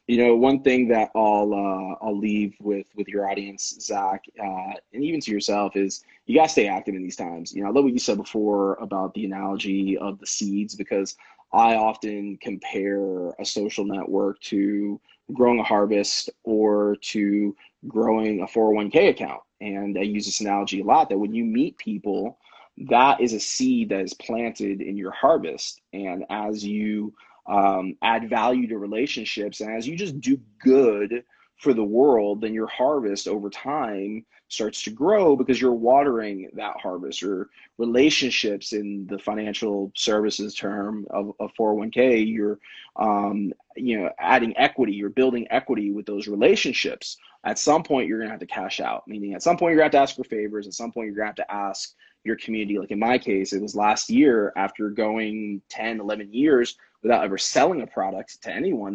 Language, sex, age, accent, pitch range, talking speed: English, male, 20-39, American, 100-110 Hz, 185 wpm